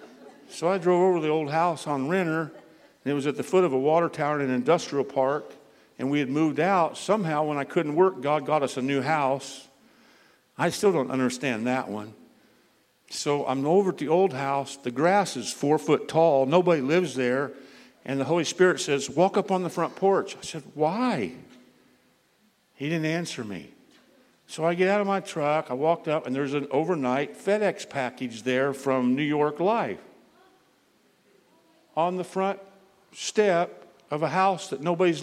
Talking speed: 185 wpm